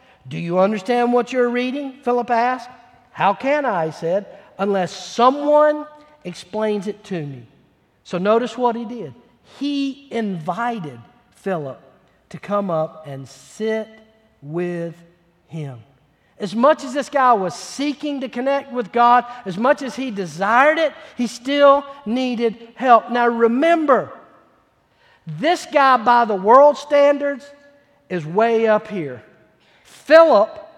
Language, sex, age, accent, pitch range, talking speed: English, male, 50-69, American, 190-265 Hz, 130 wpm